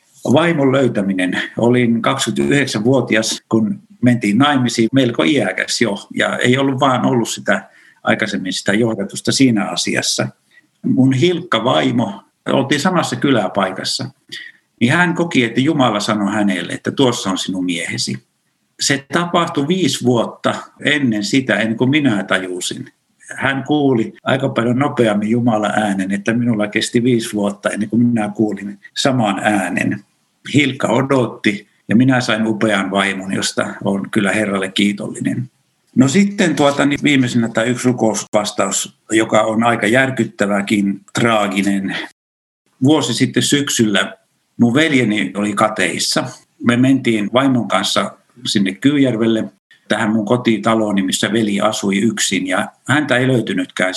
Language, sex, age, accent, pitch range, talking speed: Finnish, male, 60-79, native, 105-125 Hz, 130 wpm